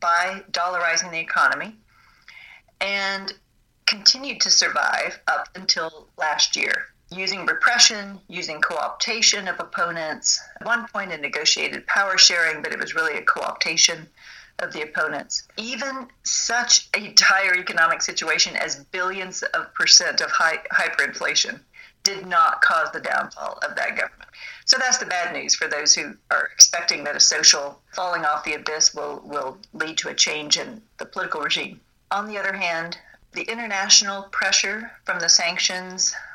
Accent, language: American, English